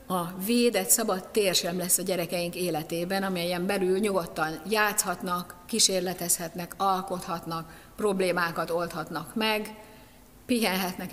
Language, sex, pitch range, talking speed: Hungarian, female, 170-205 Hz, 100 wpm